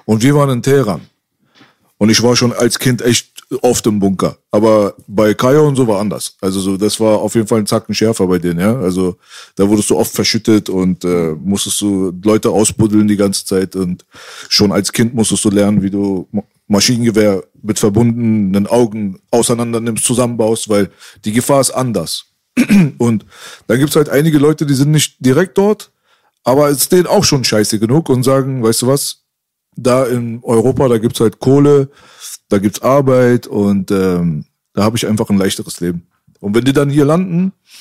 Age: 40-59